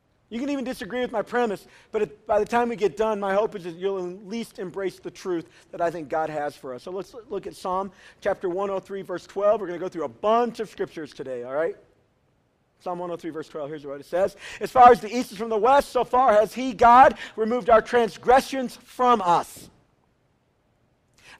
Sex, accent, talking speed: male, American, 225 wpm